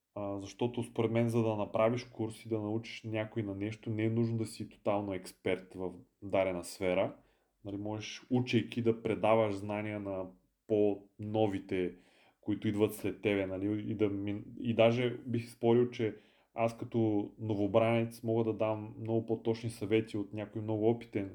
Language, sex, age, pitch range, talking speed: Bulgarian, male, 30-49, 100-115 Hz, 165 wpm